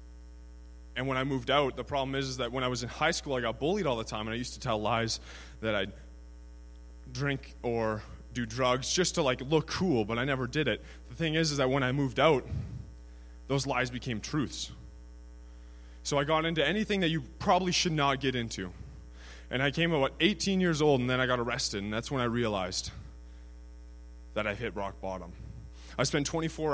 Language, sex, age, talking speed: English, male, 20-39, 210 wpm